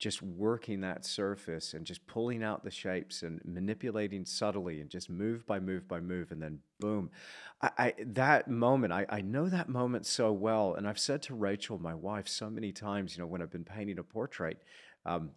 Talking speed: 205 wpm